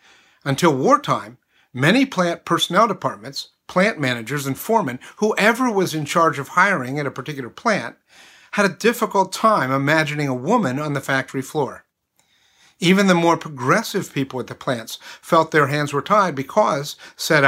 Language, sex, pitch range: English, male, 130-180 Hz